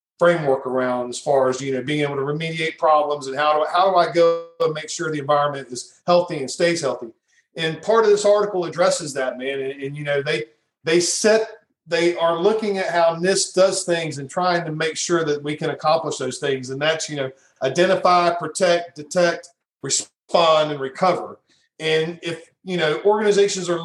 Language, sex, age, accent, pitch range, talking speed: English, male, 40-59, American, 145-185 Hz, 195 wpm